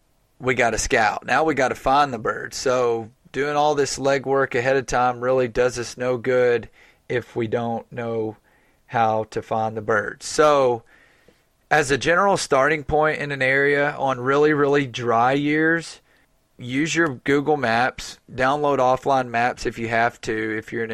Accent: American